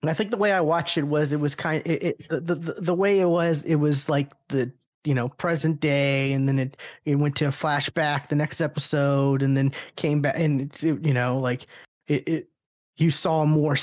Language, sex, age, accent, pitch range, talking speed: English, male, 20-39, American, 130-155 Hz, 235 wpm